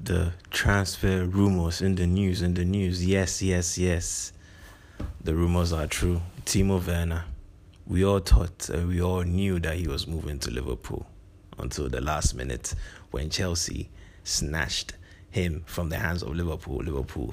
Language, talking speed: English, 155 wpm